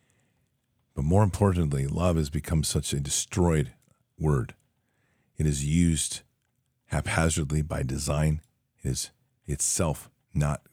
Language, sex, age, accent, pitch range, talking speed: English, male, 50-69, American, 75-110 Hz, 110 wpm